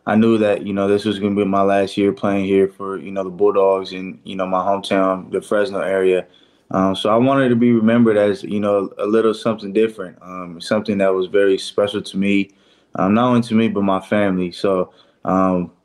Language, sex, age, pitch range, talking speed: English, male, 20-39, 95-105 Hz, 225 wpm